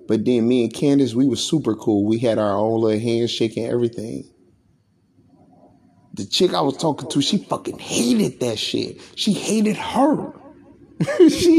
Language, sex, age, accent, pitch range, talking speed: English, male, 30-49, American, 120-165 Hz, 165 wpm